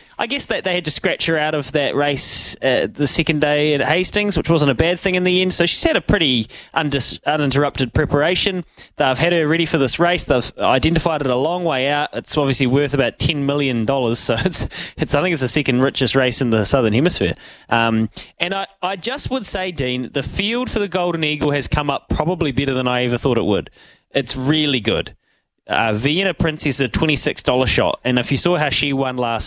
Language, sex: English, male